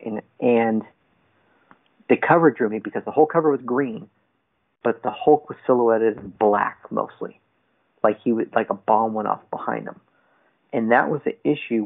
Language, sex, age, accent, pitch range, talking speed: English, male, 40-59, American, 110-130 Hz, 165 wpm